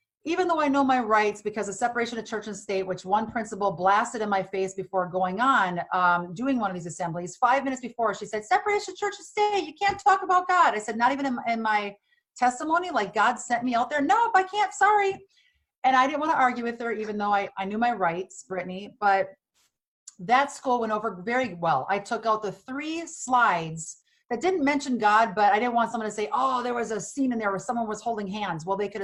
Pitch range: 190-250 Hz